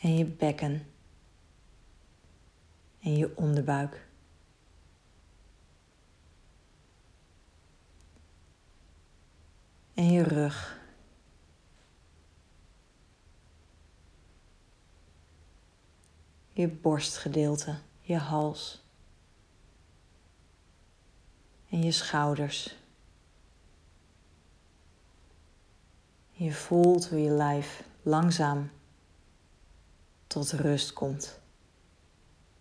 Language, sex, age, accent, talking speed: Dutch, female, 40-59, Dutch, 45 wpm